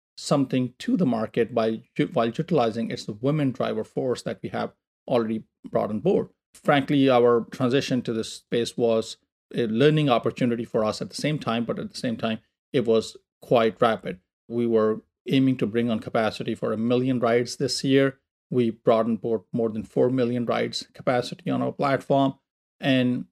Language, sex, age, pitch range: English, male, 40-59, 115-140 Hz